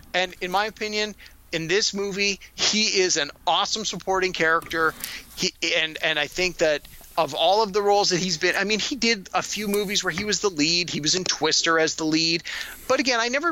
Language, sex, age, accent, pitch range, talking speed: English, male, 30-49, American, 160-210 Hz, 220 wpm